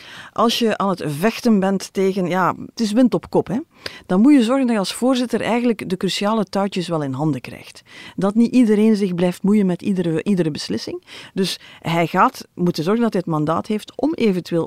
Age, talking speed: 40-59, 215 wpm